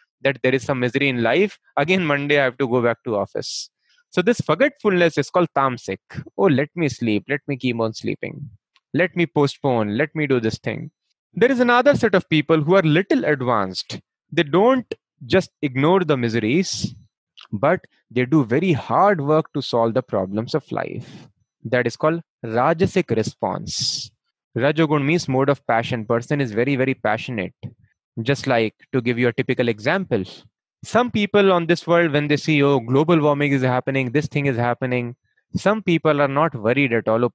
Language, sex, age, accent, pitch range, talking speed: English, male, 20-39, Indian, 125-175 Hz, 185 wpm